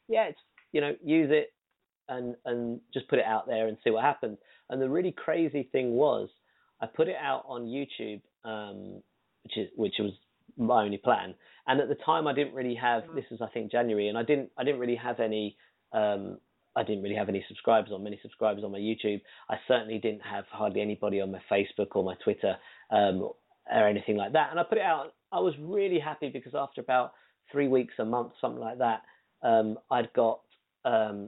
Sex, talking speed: male, 215 wpm